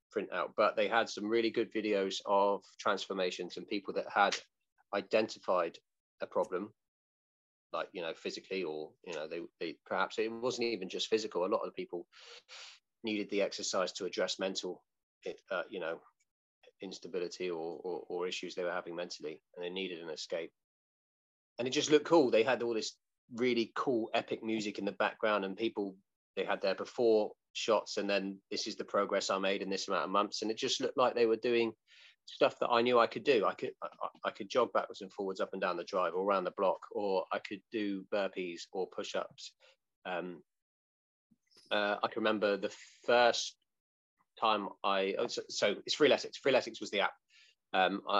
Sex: male